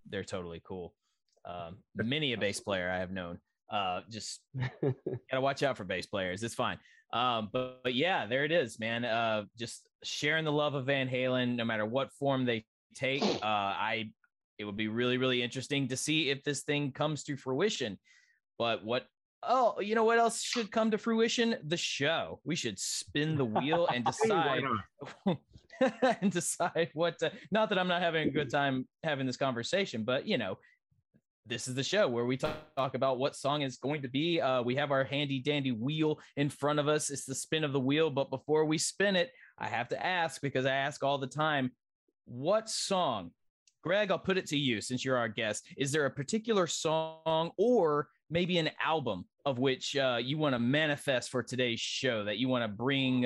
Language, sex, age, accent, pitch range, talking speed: English, male, 20-39, American, 125-160 Hz, 200 wpm